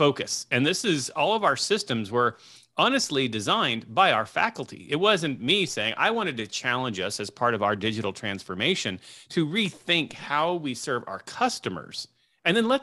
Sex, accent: male, American